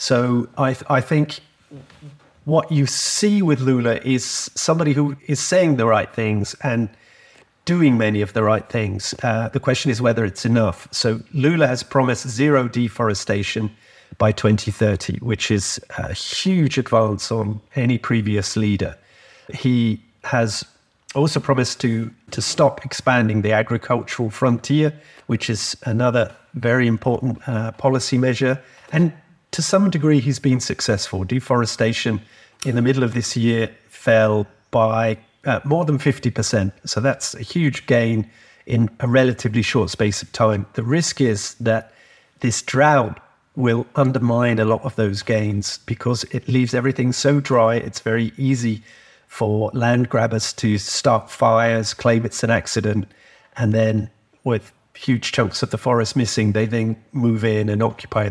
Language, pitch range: English, 110-135 Hz